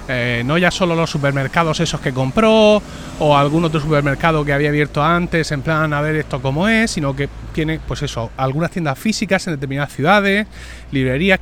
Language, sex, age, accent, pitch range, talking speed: Spanish, male, 30-49, Spanish, 140-185 Hz, 190 wpm